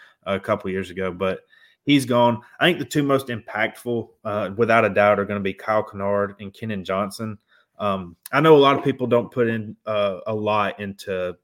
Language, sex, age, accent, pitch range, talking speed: English, male, 20-39, American, 95-115 Hz, 210 wpm